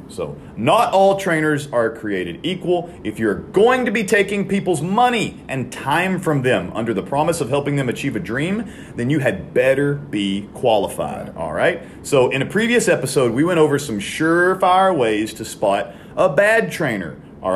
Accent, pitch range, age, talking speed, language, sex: American, 110-155 Hz, 40-59, 180 wpm, English, male